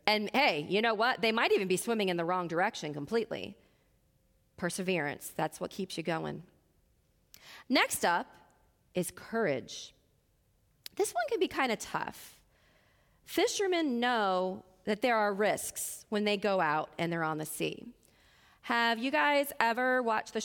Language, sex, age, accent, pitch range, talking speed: English, female, 30-49, American, 190-255 Hz, 155 wpm